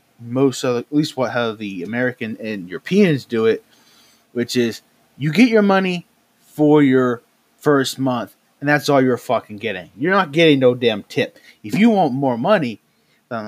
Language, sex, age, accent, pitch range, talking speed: English, male, 30-49, American, 135-195 Hz, 185 wpm